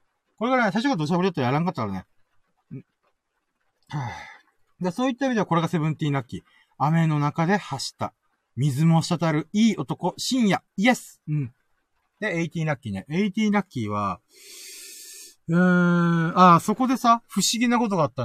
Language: Japanese